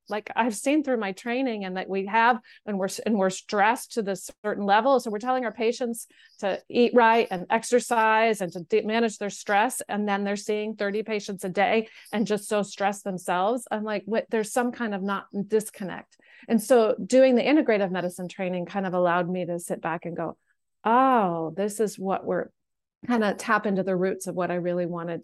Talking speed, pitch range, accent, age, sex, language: 210 wpm, 185-225 Hz, American, 40-59, female, English